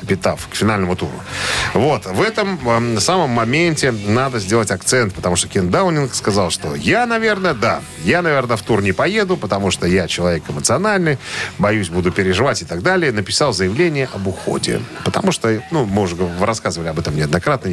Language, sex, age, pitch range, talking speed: Russian, male, 40-59, 95-135 Hz, 170 wpm